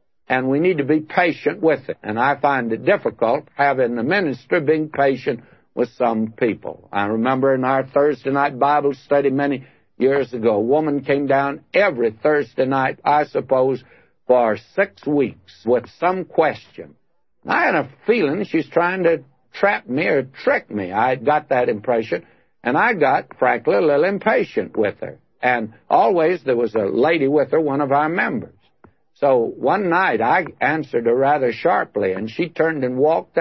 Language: English